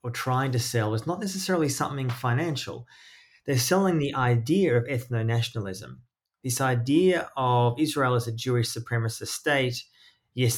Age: 20-39